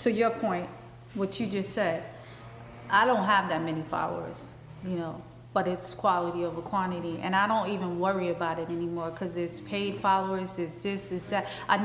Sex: female